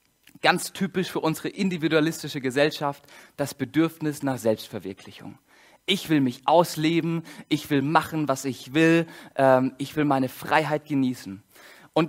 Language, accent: German, German